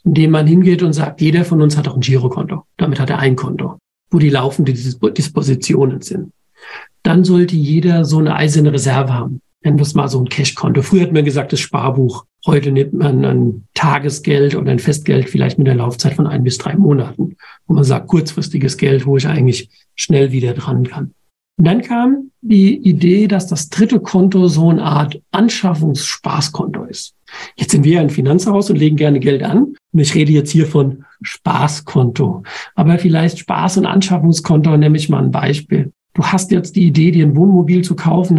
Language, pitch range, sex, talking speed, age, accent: German, 145-180 Hz, male, 195 wpm, 50-69, German